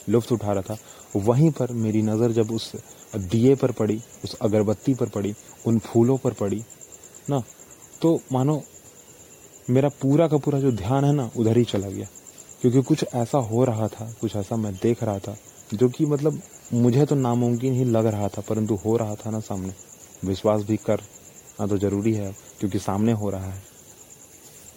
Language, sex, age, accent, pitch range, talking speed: Hindi, male, 30-49, native, 105-130 Hz, 180 wpm